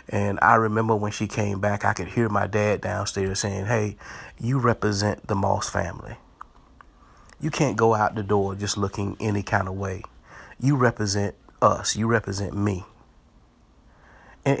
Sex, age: male, 30-49